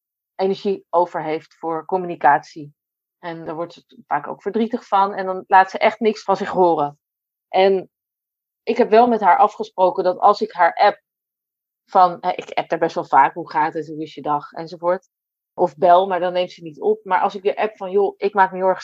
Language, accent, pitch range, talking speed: Dutch, Dutch, 170-205 Hz, 220 wpm